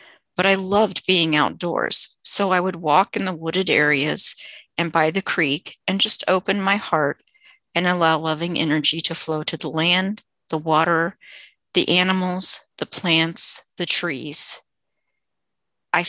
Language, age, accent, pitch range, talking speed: English, 50-69, American, 165-190 Hz, 150 wpm